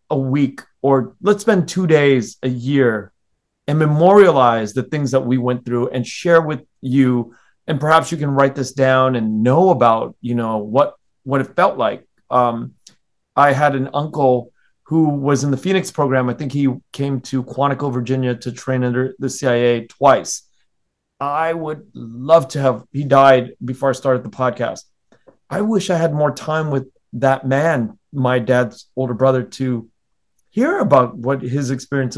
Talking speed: 175 wpm